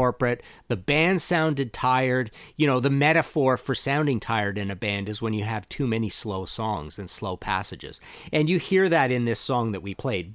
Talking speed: 210 wpm